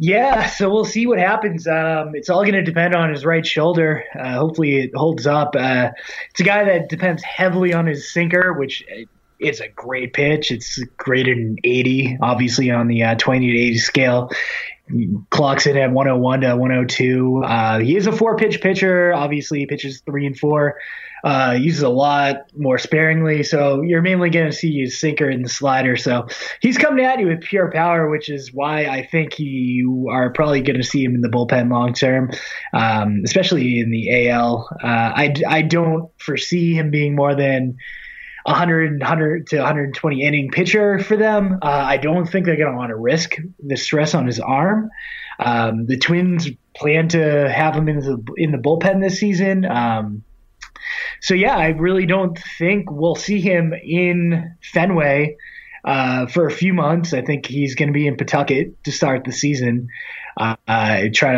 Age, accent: 20-39, American